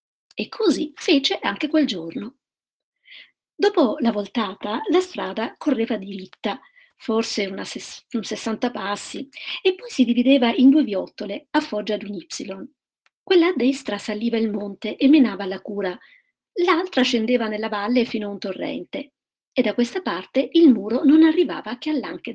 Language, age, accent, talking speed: Italian, 50-69, native, 160 wpm